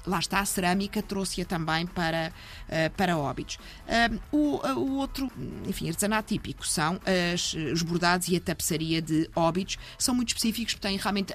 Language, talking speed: Portuguese, 150 wpm